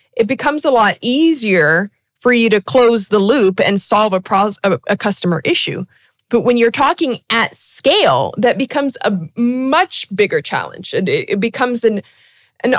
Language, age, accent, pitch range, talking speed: English, 20-39, American, 190-245 Hz, 160 wpm